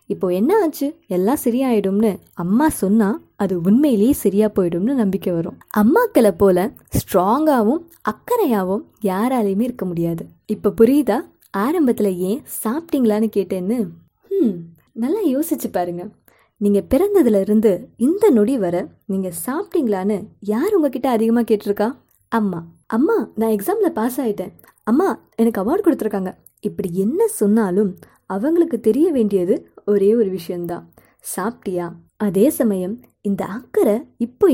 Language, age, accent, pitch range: Tamil, 20-39, native, 195-260 Hz